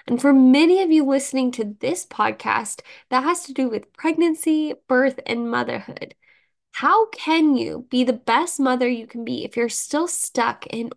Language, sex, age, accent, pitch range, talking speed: English, female, 10-29, American, 235-280 Hz, 180 wpm